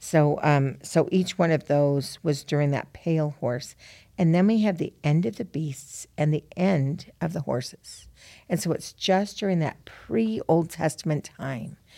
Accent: American